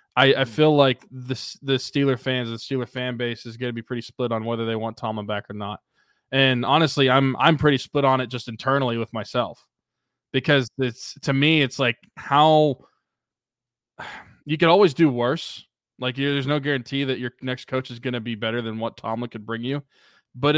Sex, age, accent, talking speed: male, 20-39, American, 205 wpm